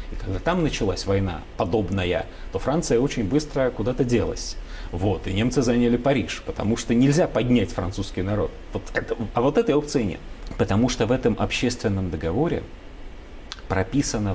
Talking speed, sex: 155 wpm, male